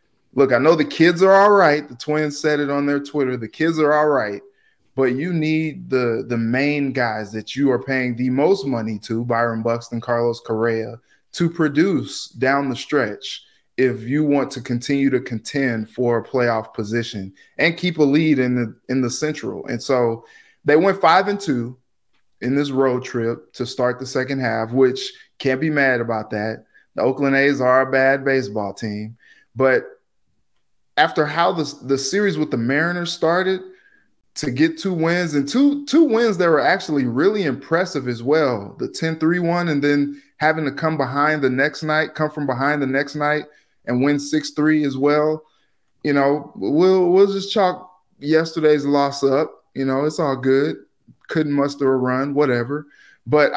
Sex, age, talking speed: male, 20-39, 185 wpm